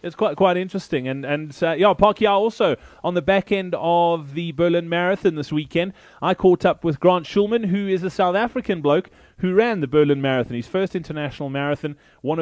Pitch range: 145-185 Hz